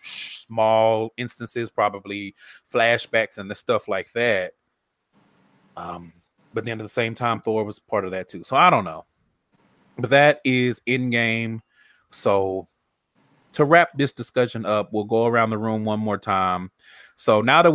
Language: English